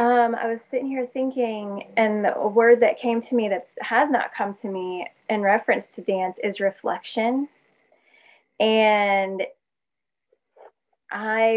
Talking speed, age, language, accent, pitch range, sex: 140 wpm, 20-39, English, American, 195-245 Hz, female